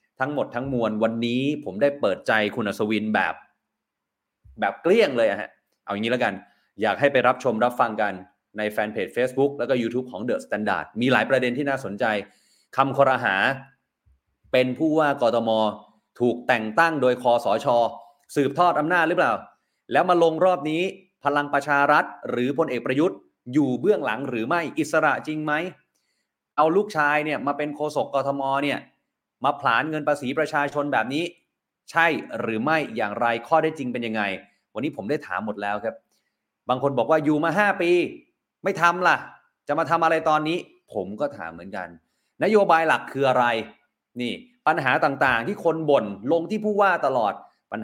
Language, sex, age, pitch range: Thai, male, 30-49, 120-160 Hz